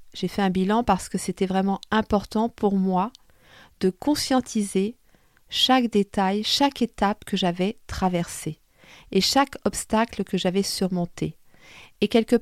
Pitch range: 180-225 Hz